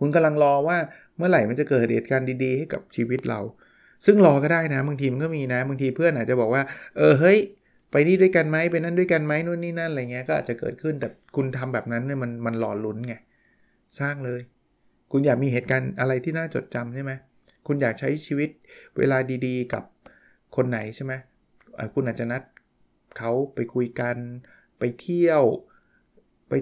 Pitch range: 120-150 Hz